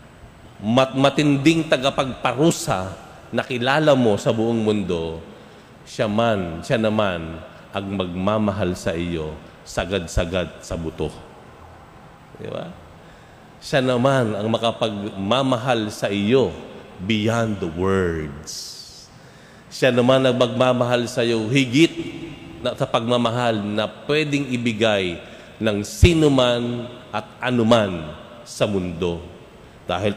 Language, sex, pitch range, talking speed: Filipino, male, 100-130 Hz, 95 wpm